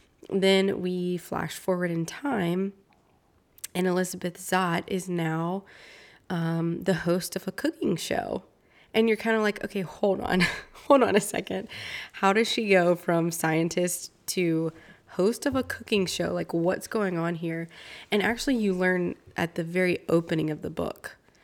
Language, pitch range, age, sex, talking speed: English, 165-190 Hz, 20-39, female, 160 wpm